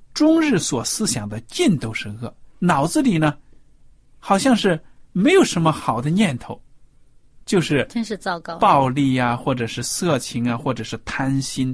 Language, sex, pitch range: Chinese, male, 120-165 Hz